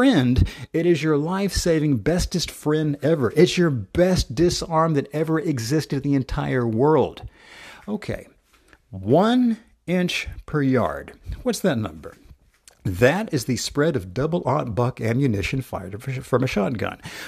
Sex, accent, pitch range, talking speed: male, American, 115-155 Hz, 140 wpm